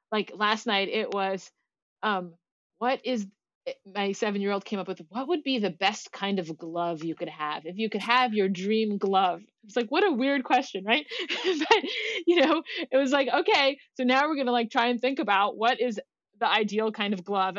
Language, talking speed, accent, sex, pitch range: English, 210 wpm, American, female, 195-240 Hz